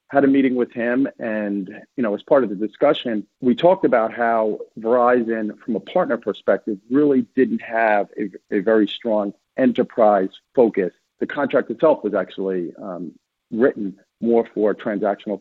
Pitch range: 105-120 Hz